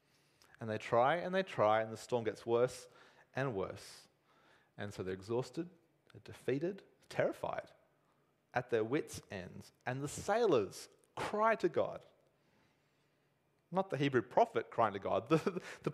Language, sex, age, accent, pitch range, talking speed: English, male, 30-49, Australian, 125-195 Hz, 145 wpm